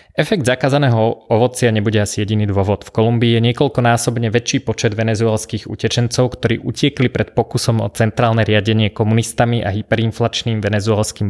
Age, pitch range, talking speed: 20-39, 110-125 Hz, 140 wpm